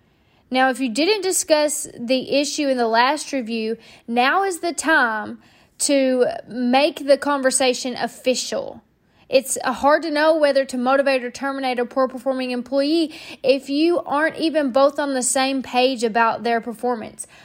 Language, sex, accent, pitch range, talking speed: English, female, American, 245-290 Hz, 150 wpm